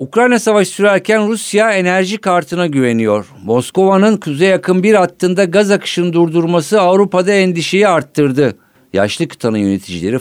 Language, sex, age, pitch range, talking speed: Turkish, male, 50-69, 110-170 Hz, 125 wpm